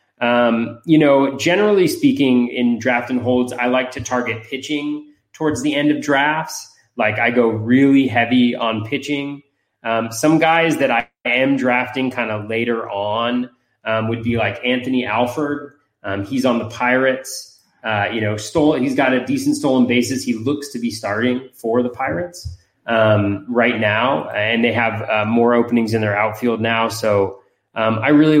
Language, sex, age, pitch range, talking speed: English, male, 20-39, 105-130 Hz, 175 wpm